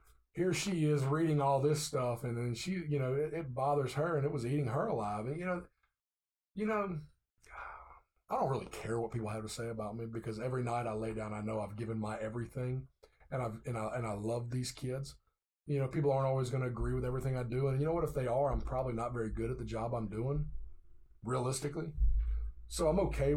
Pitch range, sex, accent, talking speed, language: 115-140 Hz, male, American, 240 wpm, English